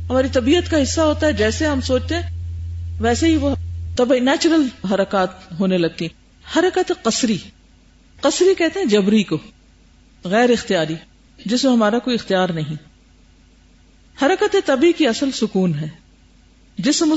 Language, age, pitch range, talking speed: Urdu, 50-69, 180-250 Hz, 140 wpm